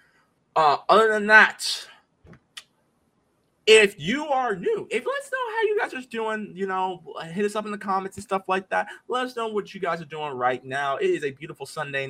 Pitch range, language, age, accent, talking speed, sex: 150-240 Hz, English, 20-39, American, 220 wpm, male